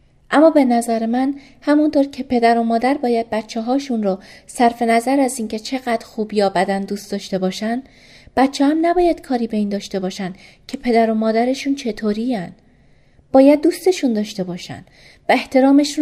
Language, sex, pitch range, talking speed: Persian, female, 200-270 Hz, 160 wpm